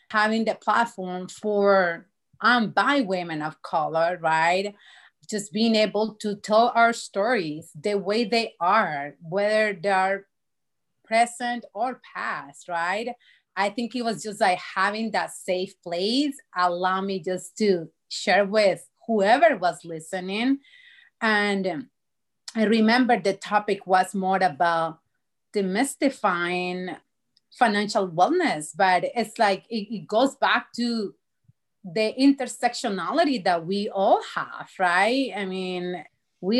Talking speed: 125 wpm